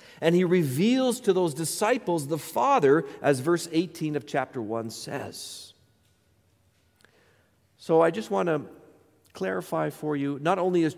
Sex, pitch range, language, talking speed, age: male, 115-185 Hz, English, 140 wpm, 50-69